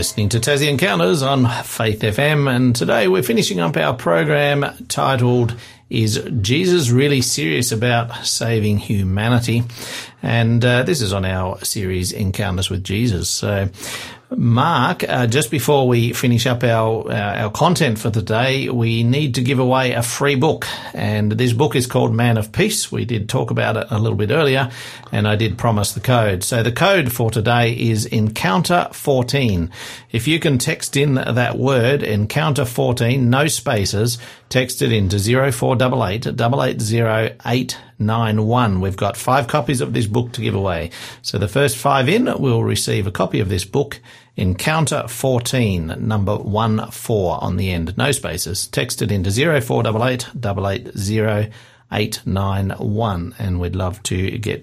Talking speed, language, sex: 155 wpm, English, male